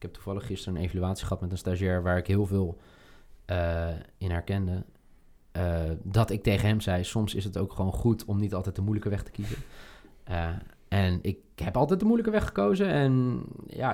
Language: Dutch